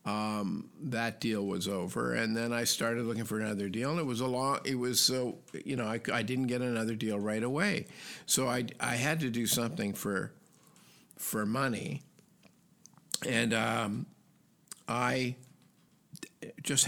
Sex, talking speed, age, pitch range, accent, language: male, 165 wpm, 50-69, 110-135 Hz, American, English